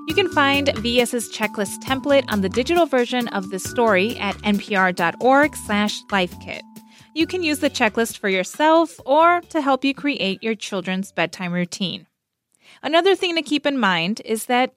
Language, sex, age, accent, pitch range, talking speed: English, female, 20-39, American, 205-275 Hz, 160 wpm